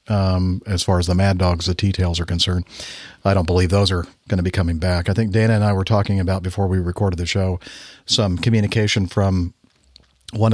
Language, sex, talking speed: English, male, 215 wpm